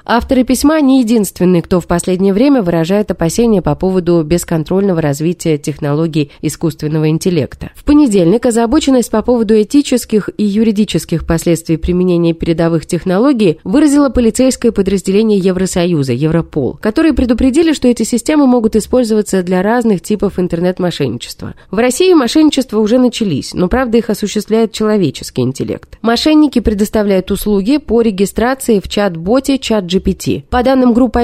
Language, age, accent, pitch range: Russian, 20-39, native, 170-245 Hz